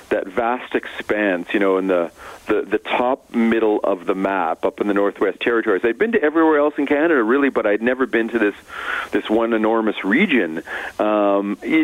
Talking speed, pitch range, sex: 200 wpm, 95-115 Hz, male